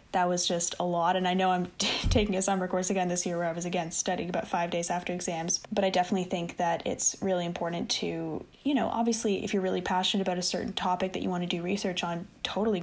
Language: English